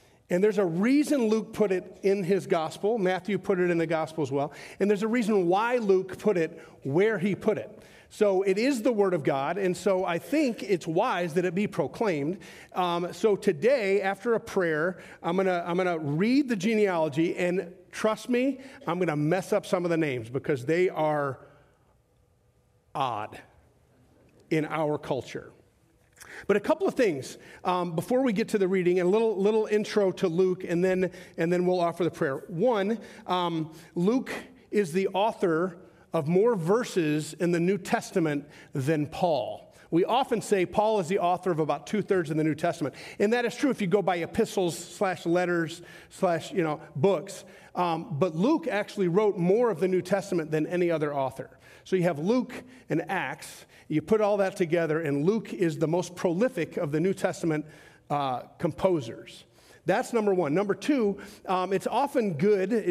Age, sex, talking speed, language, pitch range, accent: 40-59, male, 185 wpm, English, 165-205 Hz, American